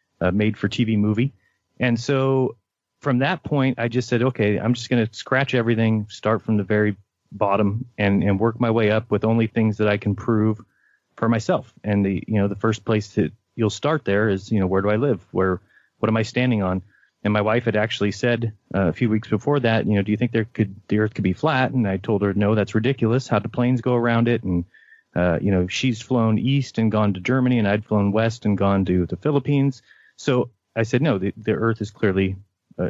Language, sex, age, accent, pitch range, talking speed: English, male, 30-49, American, 100-120 Hz, 240 wpm